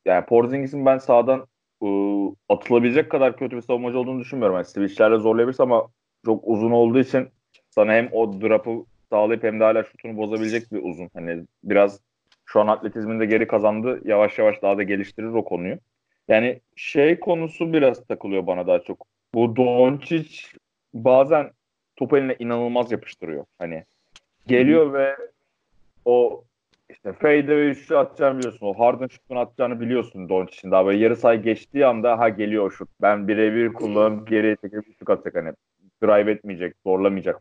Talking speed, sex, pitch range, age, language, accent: 155 wpm, male, 105-125 Hz, 30-49, Turkish, native